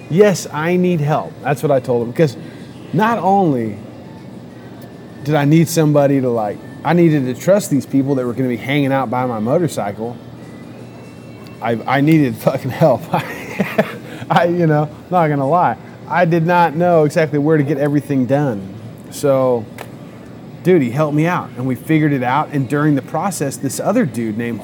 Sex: male